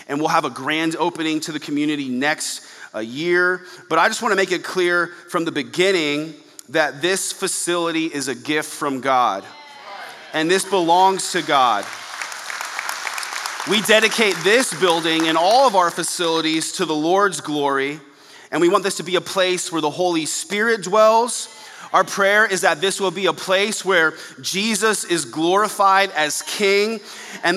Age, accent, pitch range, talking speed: 30-49, American, 155-195 Hz, 170 wpm